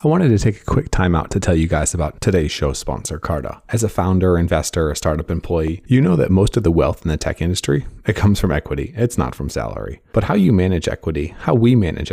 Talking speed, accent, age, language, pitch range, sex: 250 wpm, American, 30-49, English, 80-105 Hz, male